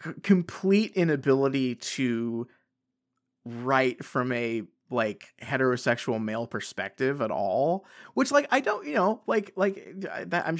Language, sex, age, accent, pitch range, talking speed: English, male, 20-39, American, 120-165 Hz, 130 wpm